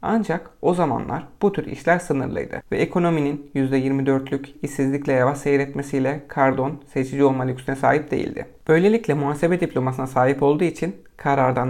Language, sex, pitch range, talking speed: Turkish, male, 135-155 Hz, 135 wpm